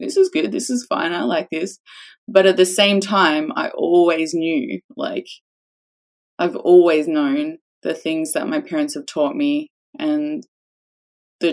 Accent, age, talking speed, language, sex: Australian, 20-39, 160 wpm, English, female